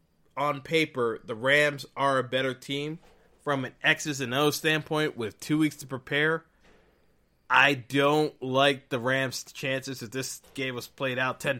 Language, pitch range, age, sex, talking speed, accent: English, 125-155 Hz, 20-39, male, 165 wpm, American